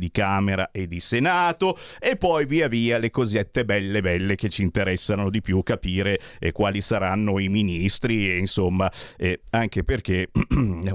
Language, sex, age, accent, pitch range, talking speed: Italian, male, 50-69, native, 95-130 Hz, 165 wpm